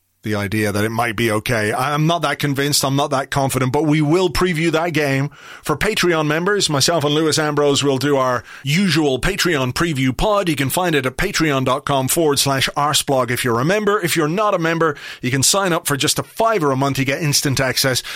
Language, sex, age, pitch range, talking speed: English, male, 30-49, 130-160 Hz, 225 wpm